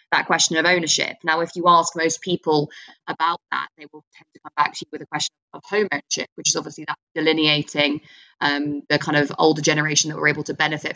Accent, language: British, English